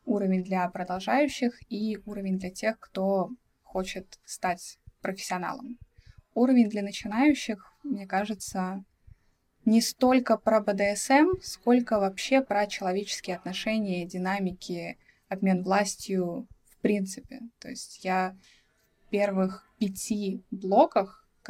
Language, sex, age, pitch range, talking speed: Russian, female, 20-39, 185-220 Hz, 105 wpm